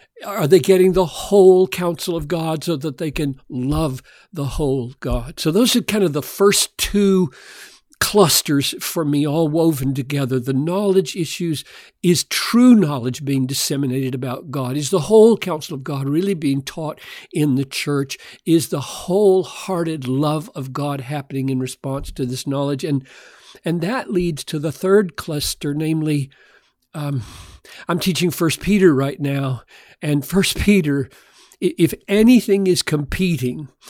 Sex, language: male, English